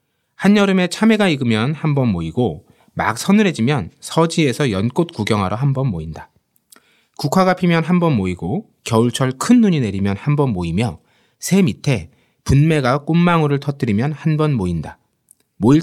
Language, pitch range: Korean, 105-160 Hz